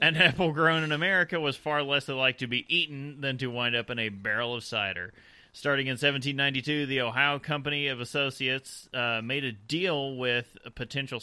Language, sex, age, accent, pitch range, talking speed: English, male, 30-49, American, 125-160 Hz, 185 wpm